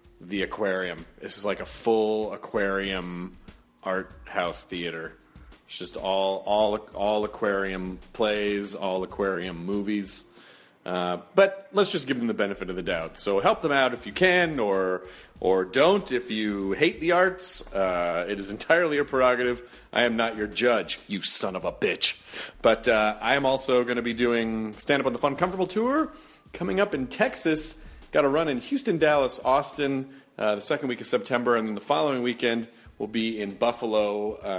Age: 30-49